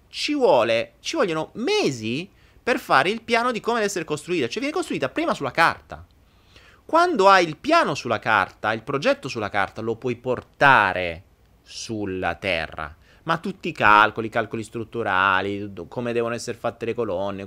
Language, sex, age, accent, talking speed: Italian, male, 30-49, native, 165 wpm